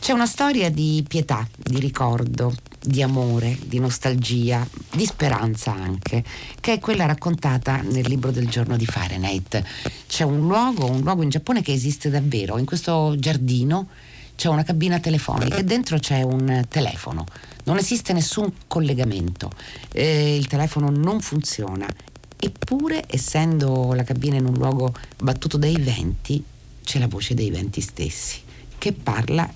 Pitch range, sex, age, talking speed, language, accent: 120-155 Hz, female, 40-59, 150 wpm, Italian, native